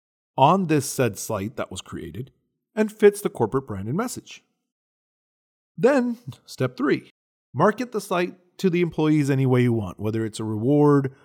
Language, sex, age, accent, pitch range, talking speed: English, male, 30-49, American, 110-165 Hz, 165 wpm